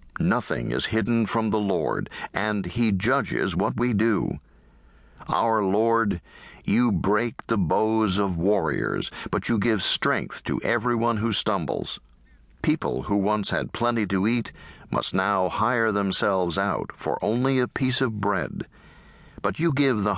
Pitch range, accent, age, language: 95-115 Hz, American, 60-79, English